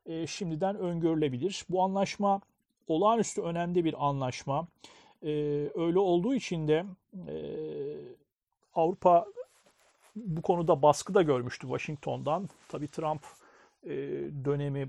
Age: 40-59